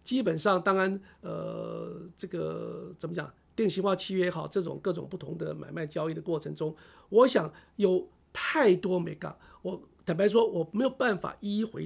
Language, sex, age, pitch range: Chinese, male, 50-69, 170-225 Hz